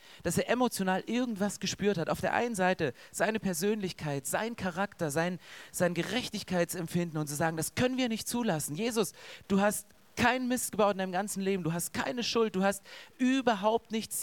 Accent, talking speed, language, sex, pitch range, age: German, 180 wpm, German, male, 165-210 Hz, 30-49